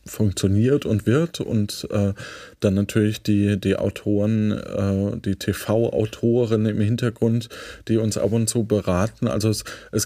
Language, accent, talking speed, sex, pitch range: German, German, 145 wpm, male, 95-115 Hz